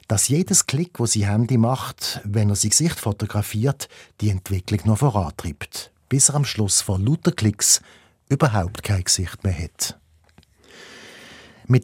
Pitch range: 105-130 Hz